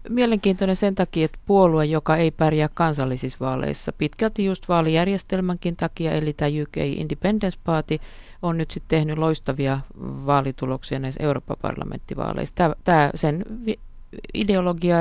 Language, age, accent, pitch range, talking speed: Finnish, 50-69, native, 140-175 Hz, 120 wpm